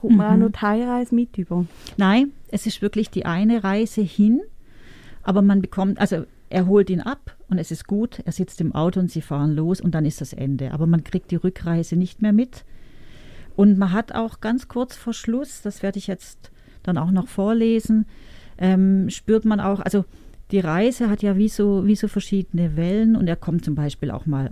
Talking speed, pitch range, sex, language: 205 wpm, 175-220 Hz, female, English